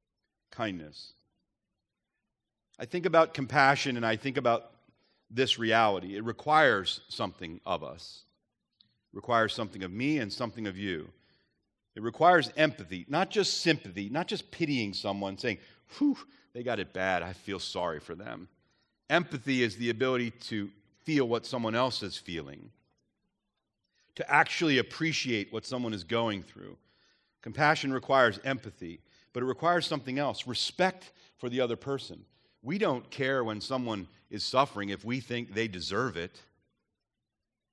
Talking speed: 145 wpm